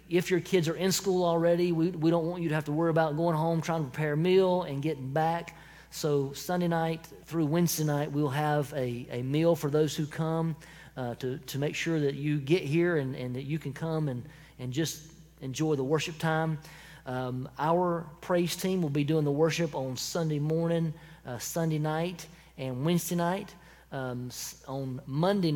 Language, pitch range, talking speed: English, 145-170 Hz, 200 wpm